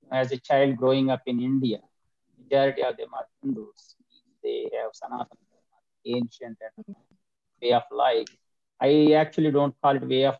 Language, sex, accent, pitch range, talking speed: English, male, Indian, 130-165 Hz, 160 wpm